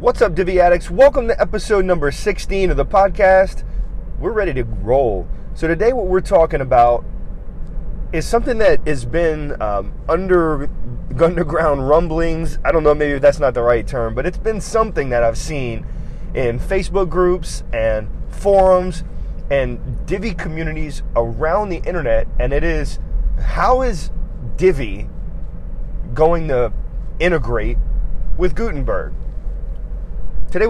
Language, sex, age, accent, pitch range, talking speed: English, male, 30-49, American, 115-180 Hz, 135 wpm